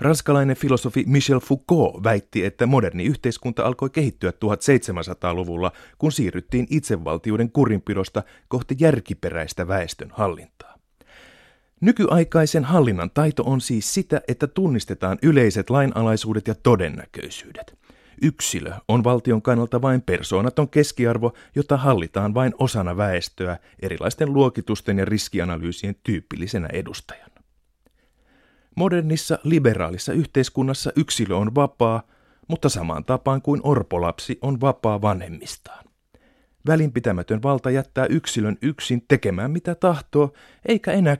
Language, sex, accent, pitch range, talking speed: Finnish, male, native, 100-145 Hz, 105 wpm